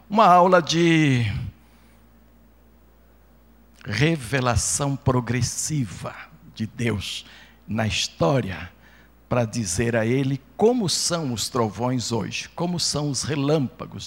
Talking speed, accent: 95 wpm, Brazilian